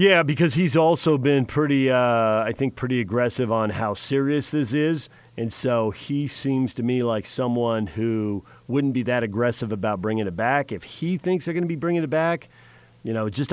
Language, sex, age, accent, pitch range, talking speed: English, male, 40-59, American, 105-135 Hz, 205 wpm